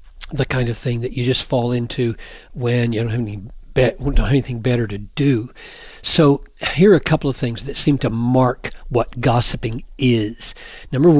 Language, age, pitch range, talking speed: English, 50-69, 125-155 Hz, 200 wpm